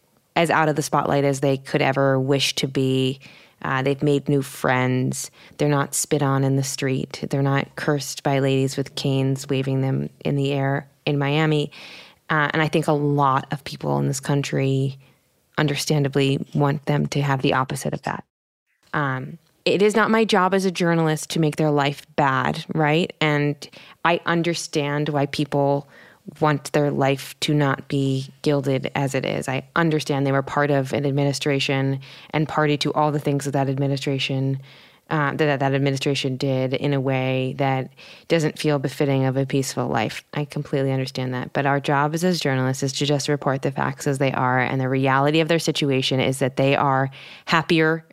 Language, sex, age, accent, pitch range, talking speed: English, female, 20-39, American, 135-155 Hz, 185 wpm